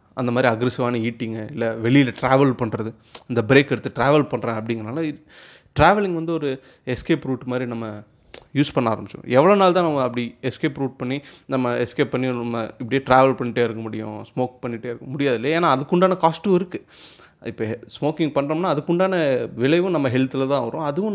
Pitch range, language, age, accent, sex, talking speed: 120-165 Hz, Tamil, 30-49, native, male, 170 wpm